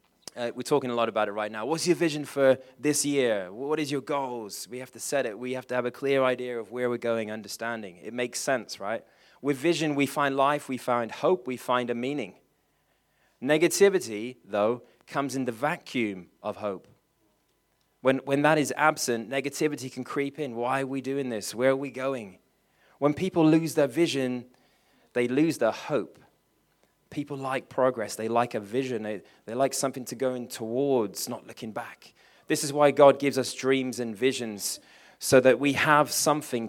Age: 20-39